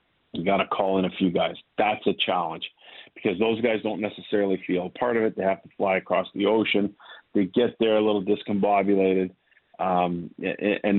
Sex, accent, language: male, American, English